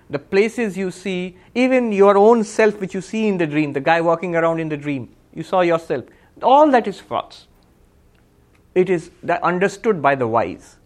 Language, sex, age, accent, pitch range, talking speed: English, male, 50-69, Indian, 125-190 Hz, 195 wpm